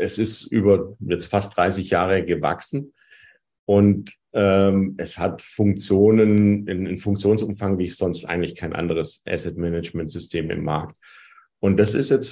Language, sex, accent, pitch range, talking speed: German, male, German, 90-105 Hz, 135 wpm